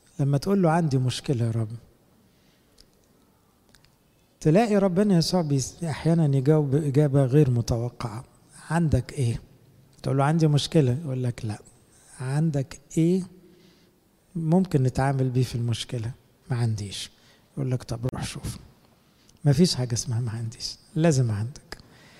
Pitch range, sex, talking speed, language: 130-175 Hz, male, 125 wpm, English